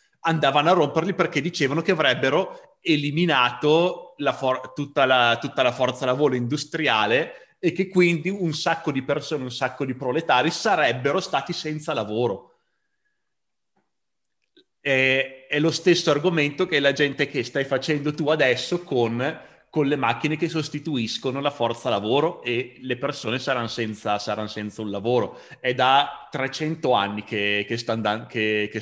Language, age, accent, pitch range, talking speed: Italian, 30-49, native, 115-150 Hz, 135 wpm